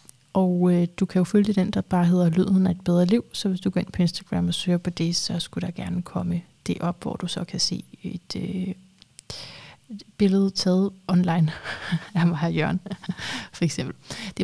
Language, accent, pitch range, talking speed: Danish, native, 170-190 Hz, 205 wpm